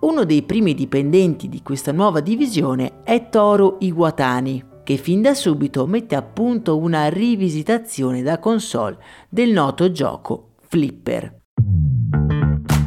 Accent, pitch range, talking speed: native, 145-205 Hz, 120 wpm